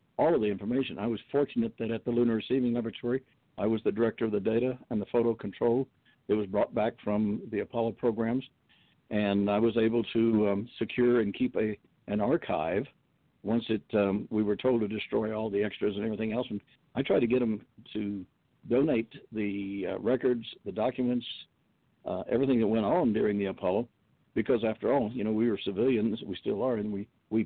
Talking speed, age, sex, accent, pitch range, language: 205 wpm, 60-79, male, American, 105-120 Hz, English